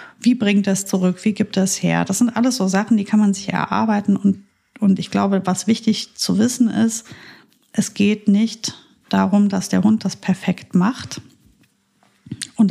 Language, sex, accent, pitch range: German, female, German, 180-205 Hz